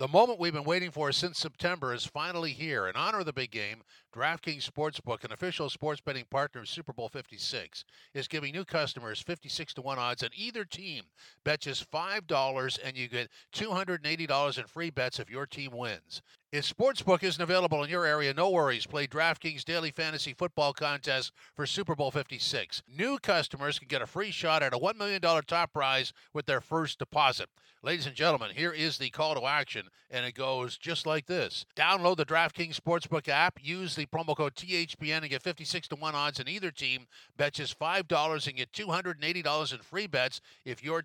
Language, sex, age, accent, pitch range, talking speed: English, male, 50-69, American, 135-165 Hz, 195 wpm